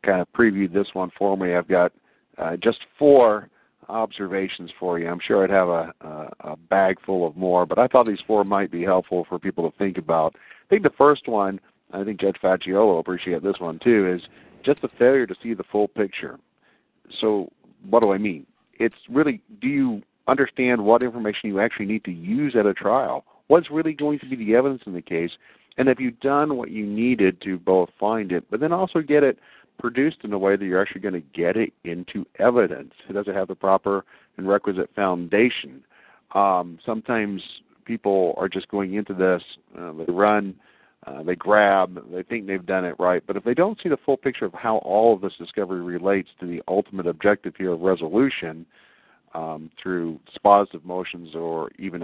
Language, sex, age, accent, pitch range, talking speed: English, male, 50-69, American, 90-115 Hz, 205 wpm